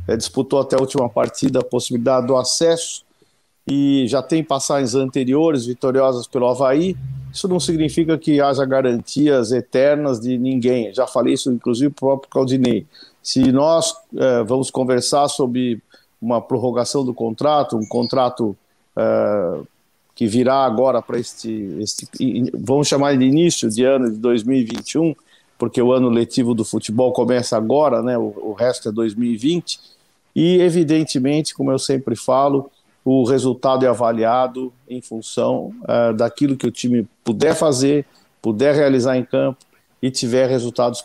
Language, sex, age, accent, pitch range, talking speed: Portuguese, male, 50-69, Brazilian, 120-140 Hz, 150 wpm